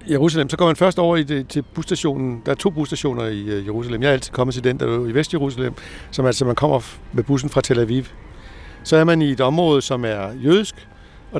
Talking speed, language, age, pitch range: 225 wpm, Danish, 60-79, 100-150 Hz